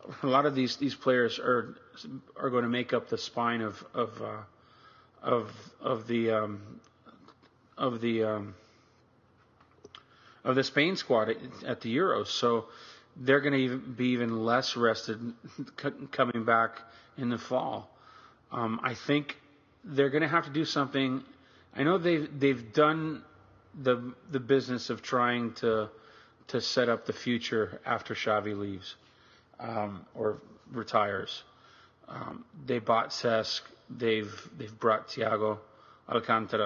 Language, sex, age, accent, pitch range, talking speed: English, male, 40-59, American, 115-135 Hz, 140 wpm